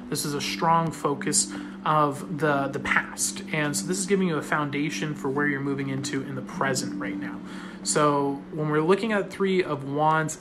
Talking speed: 200 wpm